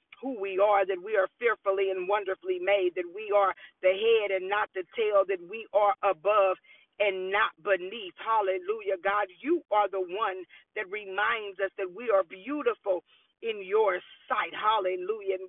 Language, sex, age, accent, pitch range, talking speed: English, female, 40-59, American, 195-315 Hz, 170 wpm